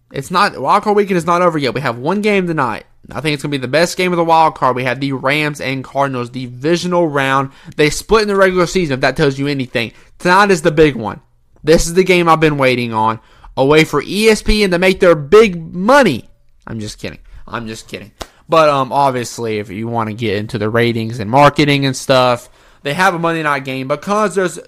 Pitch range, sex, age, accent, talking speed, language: 120-170 Hz, male, 20-39, American, 235 wpm, English